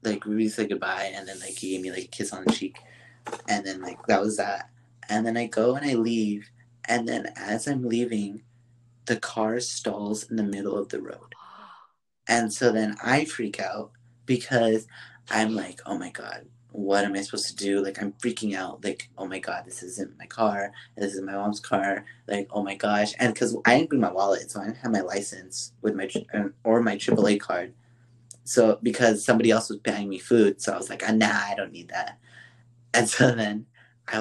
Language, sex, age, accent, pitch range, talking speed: English, male, 20-39, American, 105-120 Hz, 215 wpm